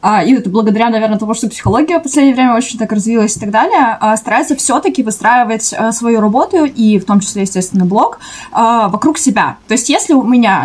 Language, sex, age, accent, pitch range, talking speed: Russian, female, 20-39, native, 205-255 Hz, 190 wpm